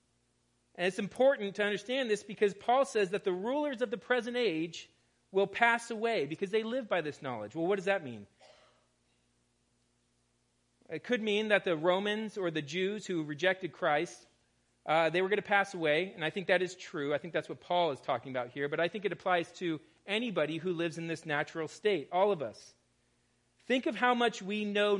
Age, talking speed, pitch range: 40-59, 205 wpm, 130-195 Hz